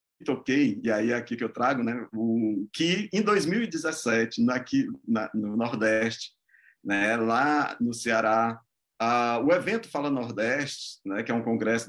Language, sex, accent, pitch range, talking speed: Portuguese, male, Brazilian, 115-170 Hz, 155 wpm